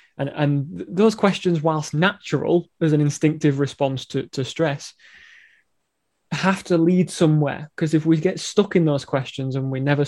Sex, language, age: male, English, 20-39